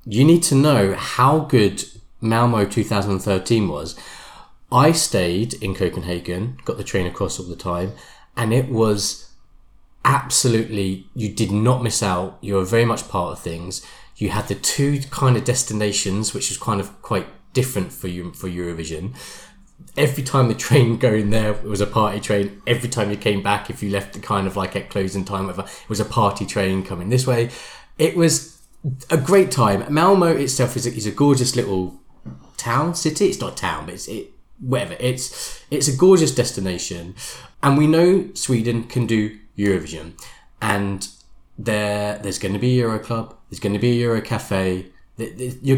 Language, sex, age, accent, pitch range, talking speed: English, male, 20-39, British, 95-125 Hz, 185 wpm